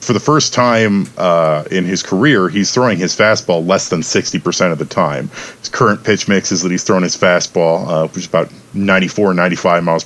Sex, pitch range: male, 95-120 Hz